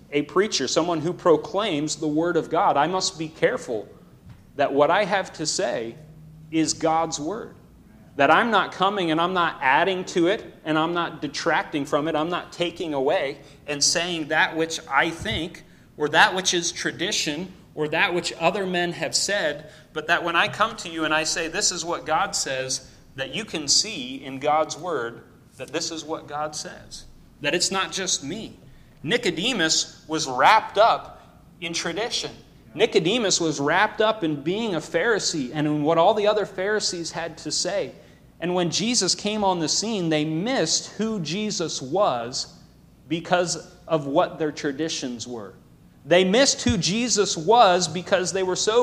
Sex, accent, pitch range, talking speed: male, American, 155-185 Hz, 175 wpm